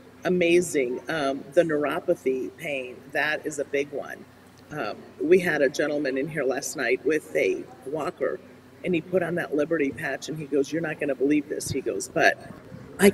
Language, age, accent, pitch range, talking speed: English, 40-59, American, 140-175 Hz, 190 wpm